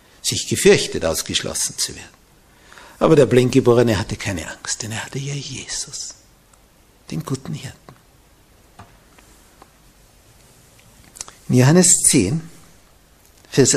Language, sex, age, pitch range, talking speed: German, male, 60-79, 110-165 Hz, 100 wpm